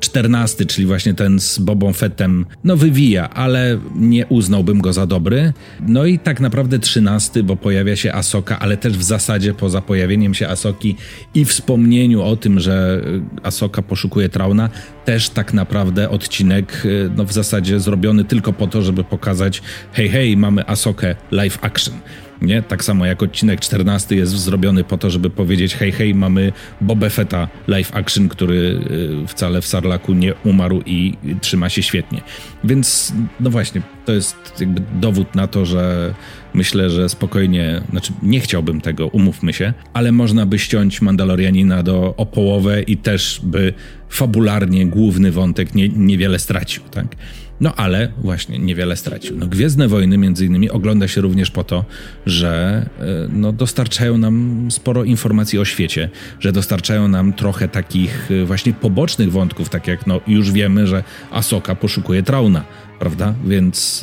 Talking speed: 155 wpm